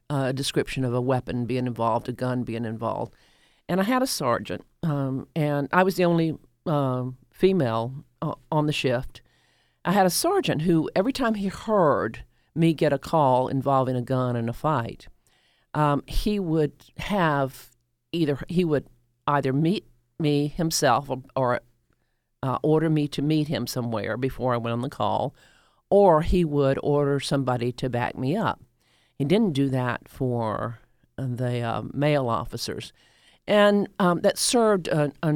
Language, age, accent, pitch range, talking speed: English, 50-69, American, 125-160 Hz, 165 wpm